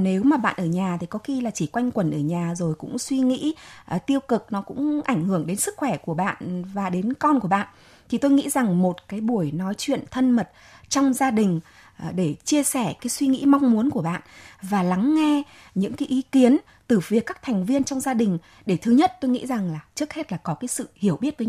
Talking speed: 250 wpm